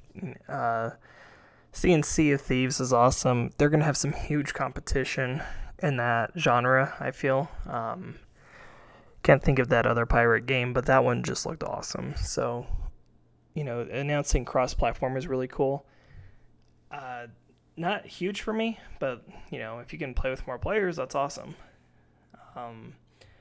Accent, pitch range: American, 120-145 Hz